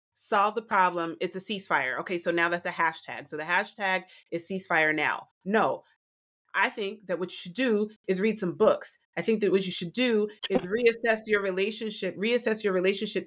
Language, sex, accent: English, female, American